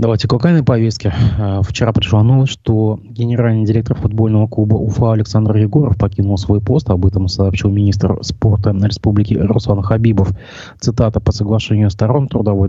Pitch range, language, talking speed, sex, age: 95-115 Hz, Russian, 150 wpm, male, 20-39